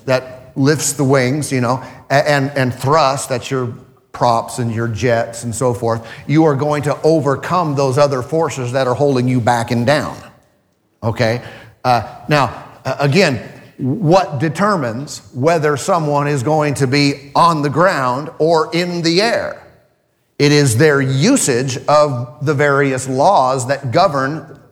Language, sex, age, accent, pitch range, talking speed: English, male, 40-59, American, 130-160 Hz, 155 wpm